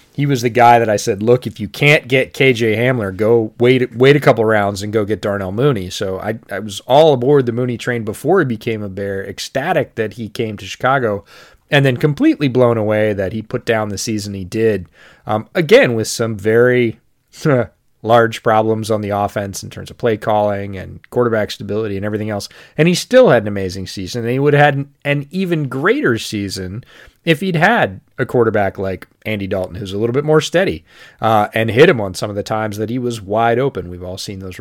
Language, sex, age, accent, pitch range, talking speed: English, male, 30-49, American, 100-125 Hz, 220 wpm